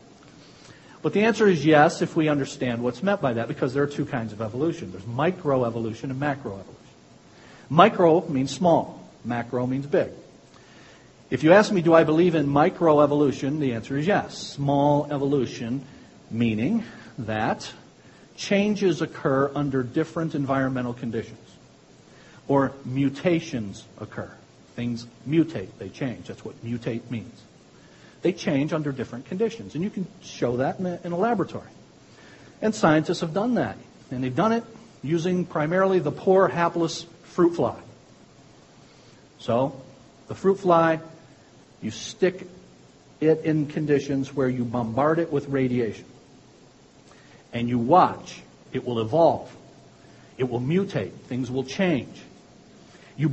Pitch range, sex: 130-170 Hz, male